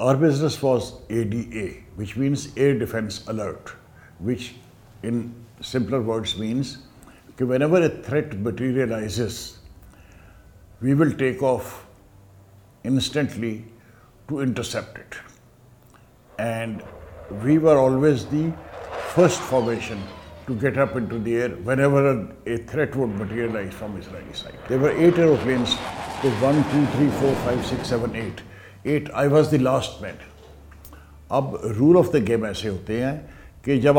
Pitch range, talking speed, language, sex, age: 105-135 Hz, 135 wpm, Urdu, male, 60-79